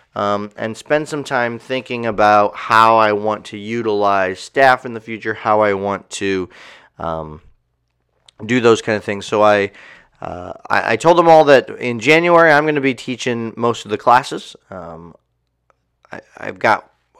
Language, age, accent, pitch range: English, 30-49, American, 100-120 Hz